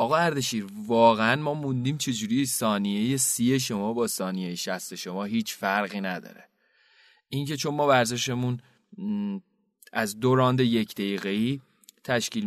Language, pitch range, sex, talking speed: Persian, 115-145 Hz, male, 125 wpm